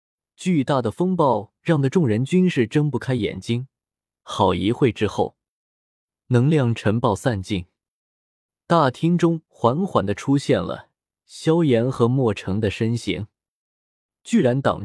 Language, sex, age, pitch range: Chinese, male, 20-39, 110-155 Hz